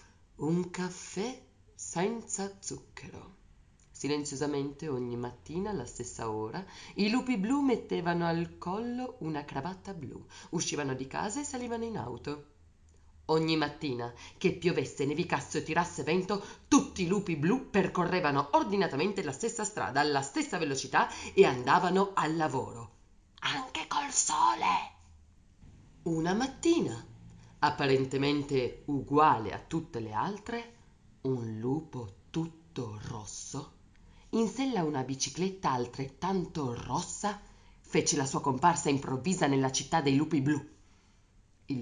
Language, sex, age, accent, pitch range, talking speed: Italian, female, 30-49, native, 120-180 Hz, 120 wpm